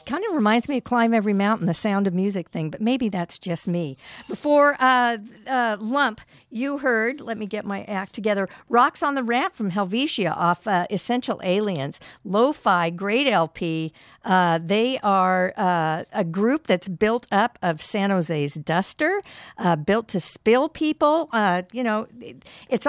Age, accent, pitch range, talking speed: 50-69, American, 195-250 Hz, 170 wpm